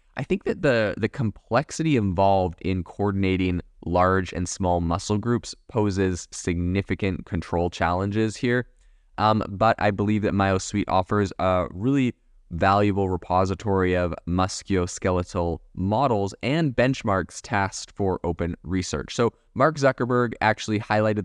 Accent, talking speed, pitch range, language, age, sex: American, 125 wpm, 95-115 Hz, English, 20-39, male